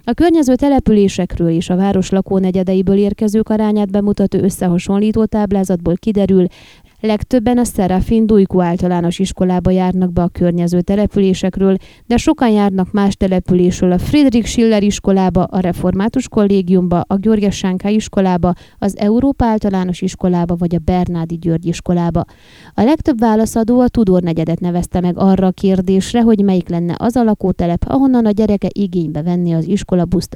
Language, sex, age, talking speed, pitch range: Hungarian, female, 20-39, 140 wpm, 180-215 Hz